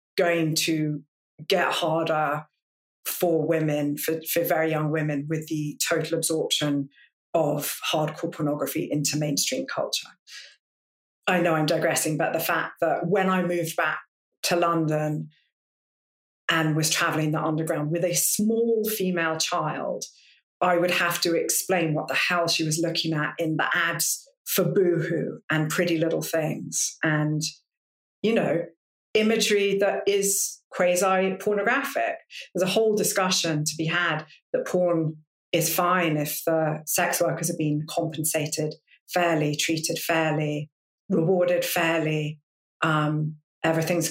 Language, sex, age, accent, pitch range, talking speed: English, female, 40-59, British, 155-180 Hz, 135 wpm